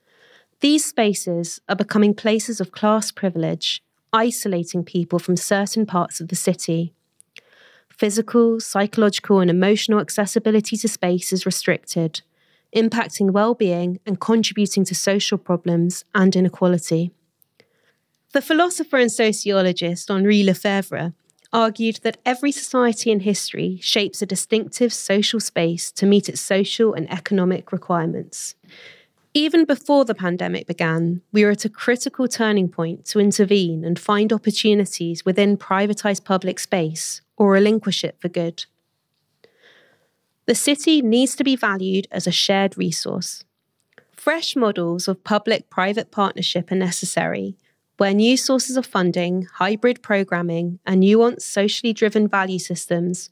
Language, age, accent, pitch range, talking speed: English, 30-49, British, 180-220 Hz, 130 wpm